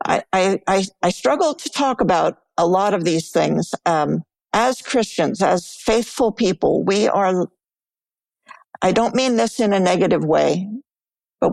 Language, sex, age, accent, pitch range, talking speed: English, female, 60-79, American, 185-240 Hz, 150 wpm